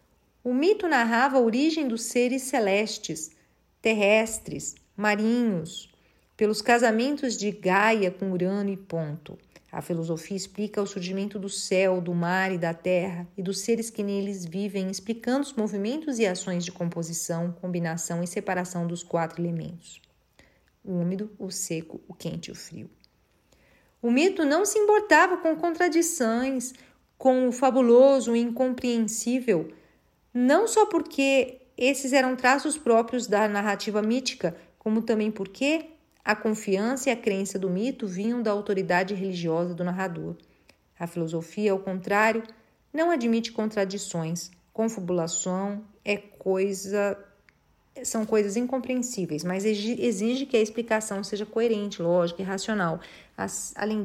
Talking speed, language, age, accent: 130 wpm, Portuguese, 40-59, Brazilian